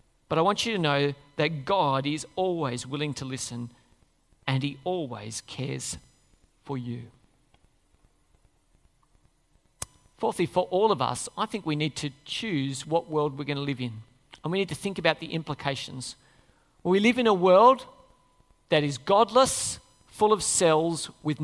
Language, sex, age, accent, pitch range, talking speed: English, male, 40-59, Australian, 135-185 Hz, 160 wpm